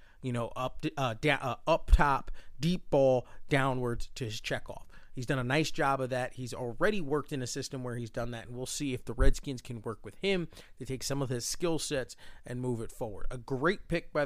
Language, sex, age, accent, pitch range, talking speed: English, male, 30-49, American, 125-145 Hz, 235 wpm